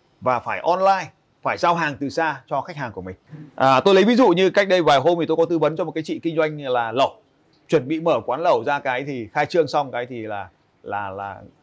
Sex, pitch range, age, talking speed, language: male, 130-165 Hz, 30-49, 265 wpm, Vietnamese